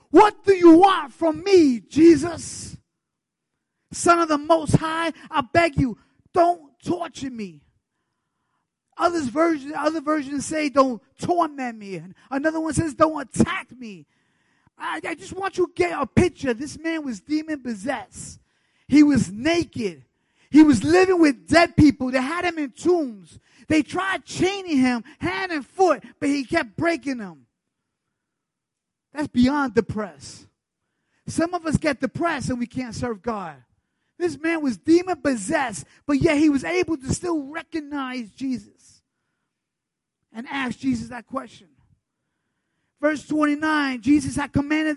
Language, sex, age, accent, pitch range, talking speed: English, male, 20-39, American, 250-325 Hz, 140 wpm